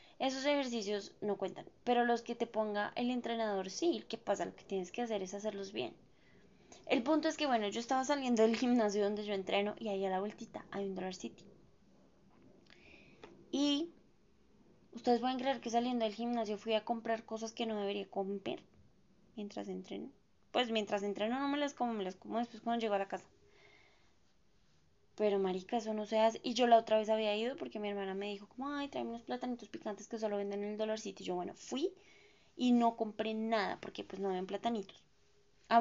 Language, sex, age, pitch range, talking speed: Spanish, female, 20-39, 200-240 Hz, 210 wpm